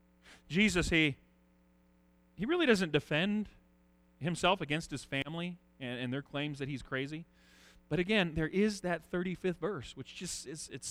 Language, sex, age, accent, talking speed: English, male, 40-59, American, 150 wpm